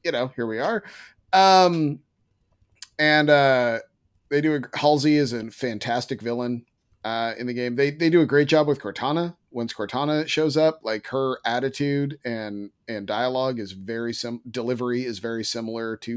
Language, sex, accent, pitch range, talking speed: English, male, American, 110-155 Hz, 170 wpm